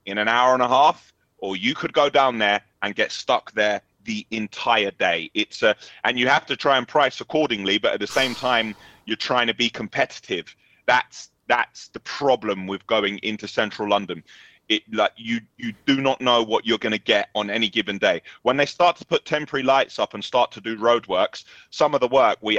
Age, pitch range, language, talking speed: 30-49, 105-140 Hz, English, 220 wpm